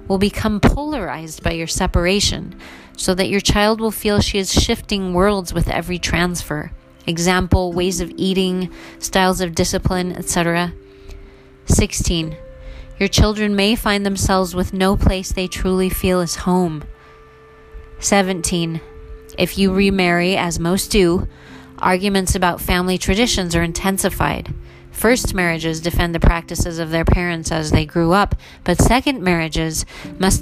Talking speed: 140 wpm